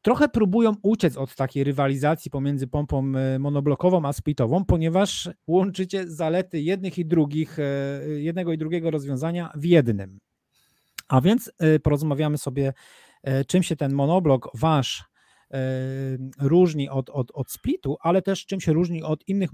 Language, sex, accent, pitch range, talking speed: Polish, male, native, 140-175 Hz, 135 wpm